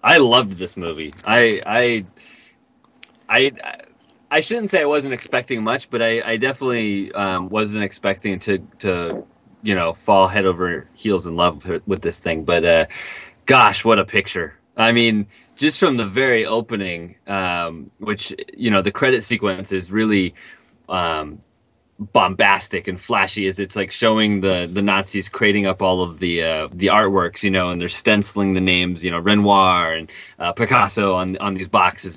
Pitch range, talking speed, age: 90-110 Hz, 175 wpm, 30-49